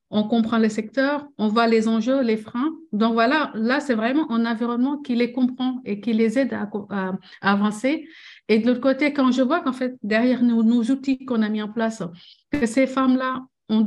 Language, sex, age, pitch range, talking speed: French, female, 50-69, 220-260 Hz, 215 wpm